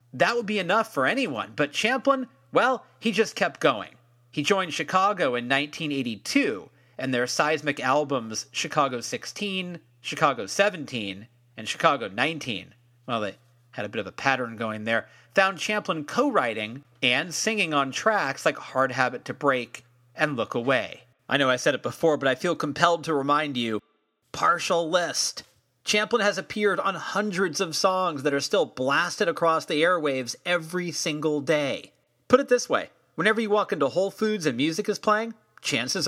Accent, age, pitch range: American, 30-49, 130-185 Hz